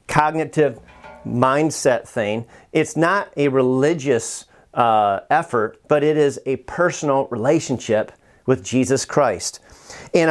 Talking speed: 110 wpm